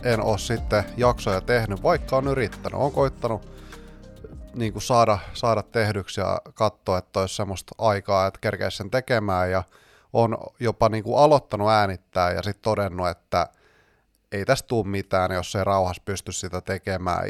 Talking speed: 155 wpm